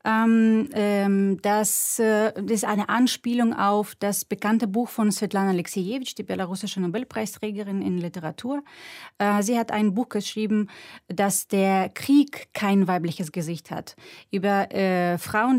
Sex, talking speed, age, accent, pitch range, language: female, 115 wpm, 30-49, German, 190-225 Hz, German